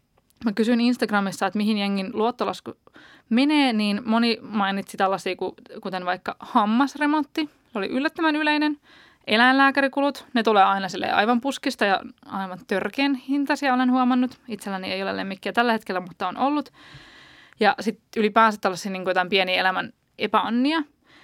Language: Finnish